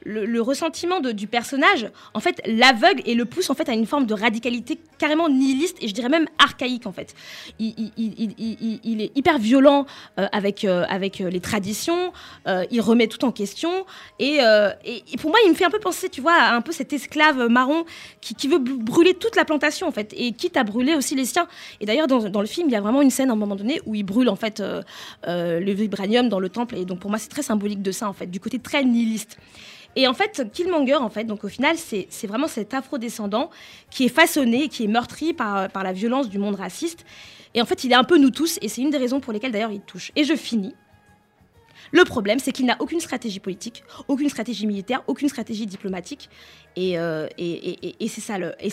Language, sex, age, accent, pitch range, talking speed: French, female, 20-39, French, 215-295 Hz, 235 wpm